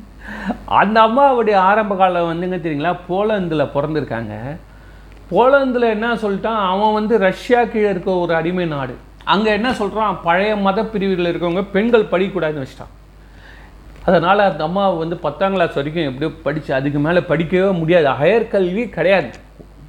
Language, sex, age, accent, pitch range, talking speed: Tamil, male, 40-59, native, 140-200 Hz, 135 wpm